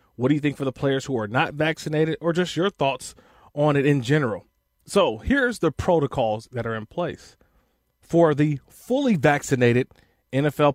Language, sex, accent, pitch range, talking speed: English, male, American, 120-175 Hz, 180 wpm